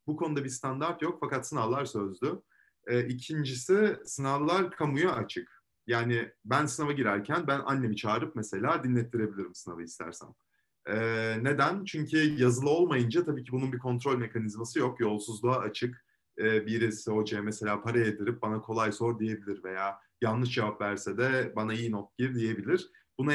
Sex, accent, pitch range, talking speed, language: male, native, 110-140 Hz, 150 wpm, Turkish